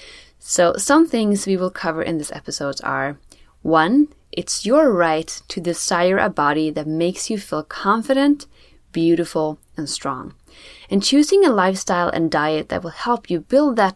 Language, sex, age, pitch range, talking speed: English, female, 20-39, 160-225 Hz, 165 wpm